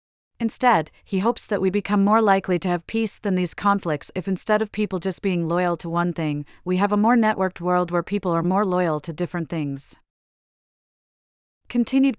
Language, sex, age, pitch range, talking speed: English, female, 40-59, 170-200 Hz, 190 wpm